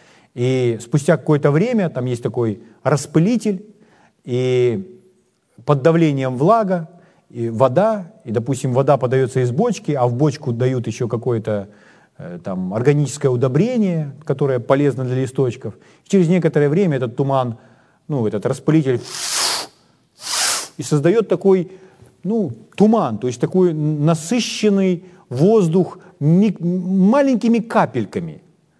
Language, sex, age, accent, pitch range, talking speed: Ukrainian, male, 40-59, native, 135-195 Hz, 115 wpm